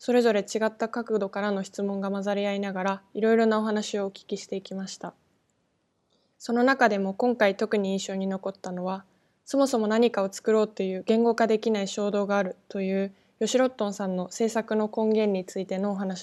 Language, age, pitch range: Japanese, 20-39, 195-225 Hz